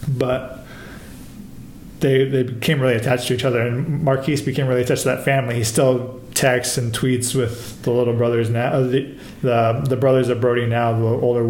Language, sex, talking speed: English, male, 195 wpm